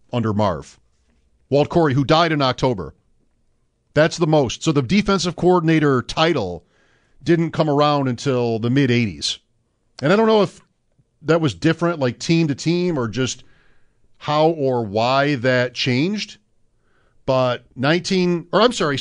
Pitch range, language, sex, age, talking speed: 115-145 Hz, English, male, 50-69, 145 wpm